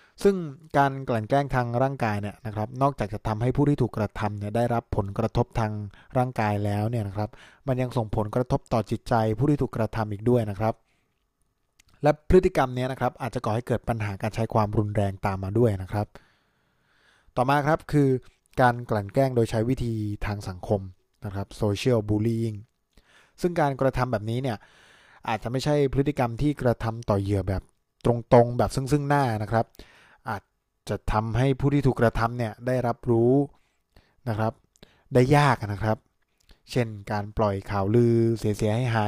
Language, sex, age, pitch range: Thai, male, 20-39, 105-130 Hz